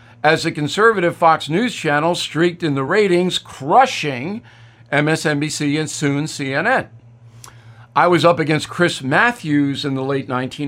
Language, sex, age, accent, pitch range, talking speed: English, male, 50-69, American, 130-170 Hz, 135 wpm